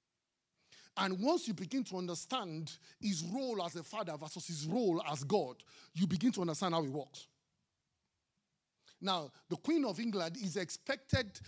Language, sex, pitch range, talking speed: English, male, 170-255 Hz, 155 wpm